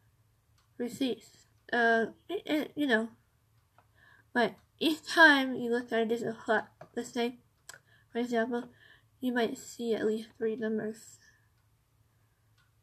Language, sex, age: English, female, 20-39